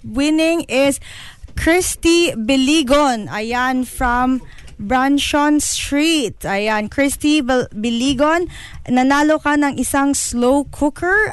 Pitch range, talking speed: 245-315 Hz, 90 wpm